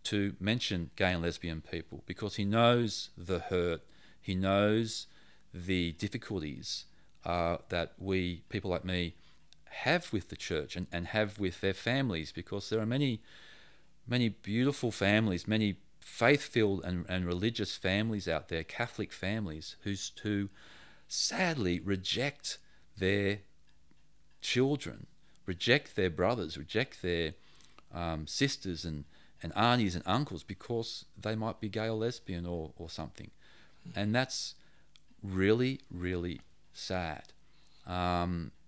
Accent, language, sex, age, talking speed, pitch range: Australian, English, male, 40-59, 125 wpm, 85-105 Hz